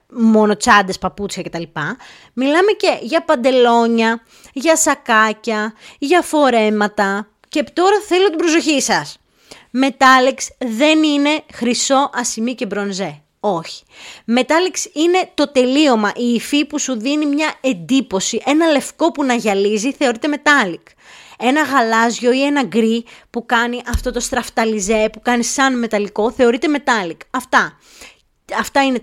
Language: Greek